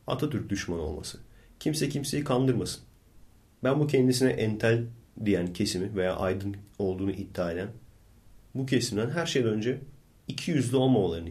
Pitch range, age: 95-120 Hz, 40-59